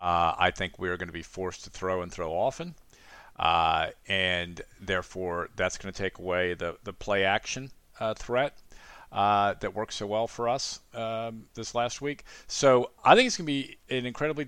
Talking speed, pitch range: 190 wpm, 95-115 Hz